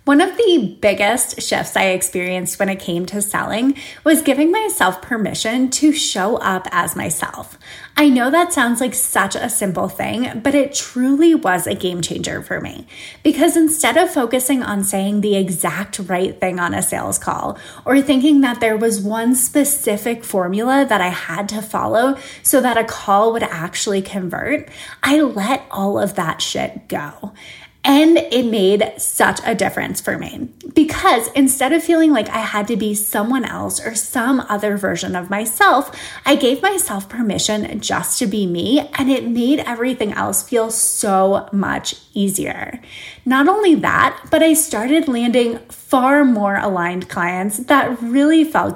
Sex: female